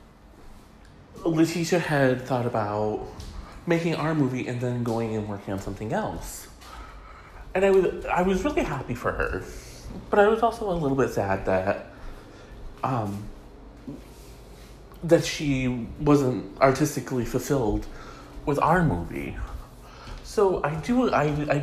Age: 30-49